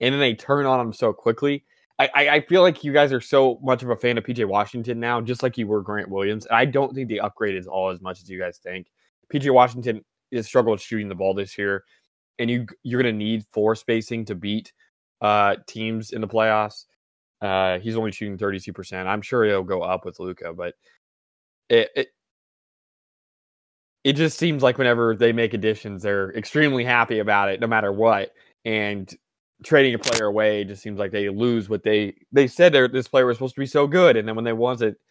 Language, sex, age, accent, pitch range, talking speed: English, male, 20-39, American, 105-130 Hz, 220 wpm